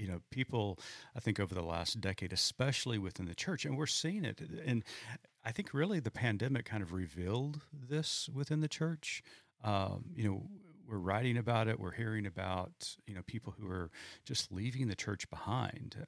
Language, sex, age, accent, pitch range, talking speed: English, male, 40-59, American, 90-115 Hz, 185 wpm